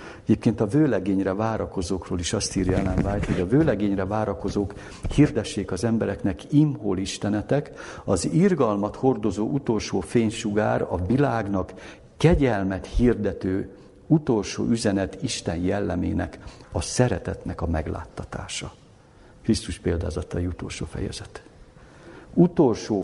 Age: 60-79